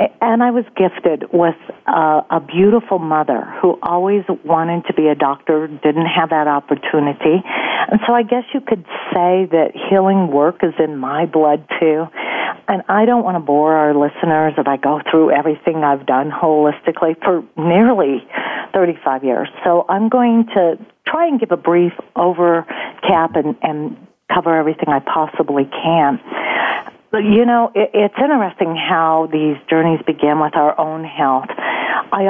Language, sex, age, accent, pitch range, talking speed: English, female, 50-69, American, 155-195 Hz, 160 wpm